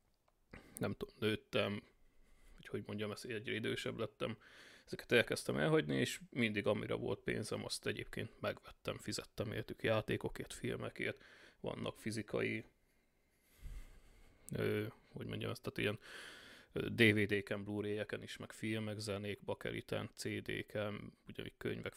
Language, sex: Hungarian, male